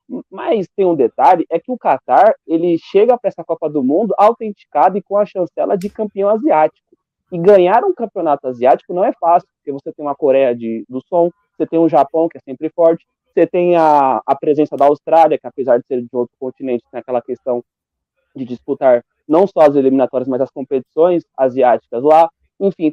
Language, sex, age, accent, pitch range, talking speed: Portuguese, male, 20-39, Brazilian, 145-215 Hz, 200 wpm